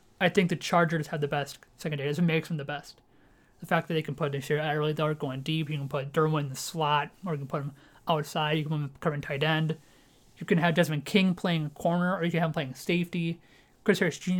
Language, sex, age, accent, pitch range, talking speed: English, male, 30-49, American, 150-175 Hz, 255 wpm